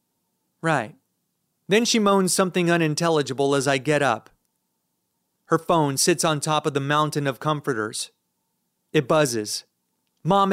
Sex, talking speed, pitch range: male, 130 wpm, 135-160 Hz